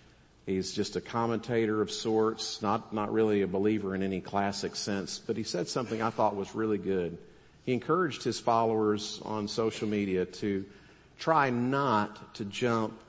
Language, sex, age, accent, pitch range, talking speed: English, male, 50-69, American, 95-110 Hz, 165 wpm